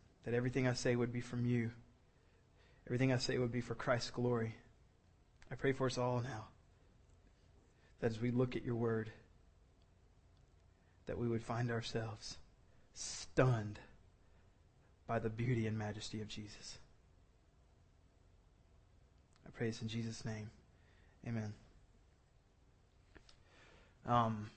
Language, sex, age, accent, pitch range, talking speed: English, male, 20-39, American, 110-135 Hz, 120 wpm